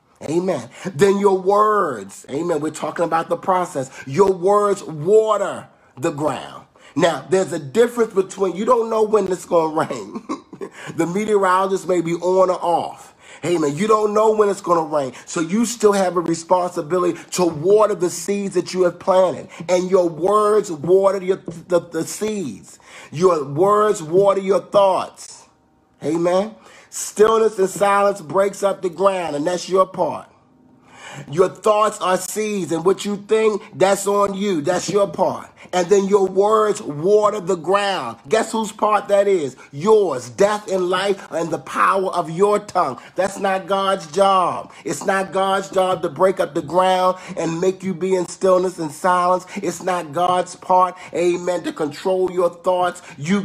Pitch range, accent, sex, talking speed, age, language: 175-200 Hz, American, male, 165 wpm, 30-49, English